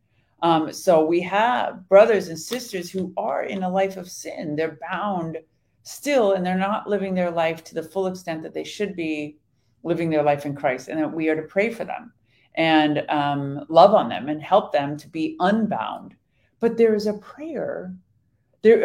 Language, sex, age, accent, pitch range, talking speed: English, female, 40-59, American, 150-195 Hz, 195 wpm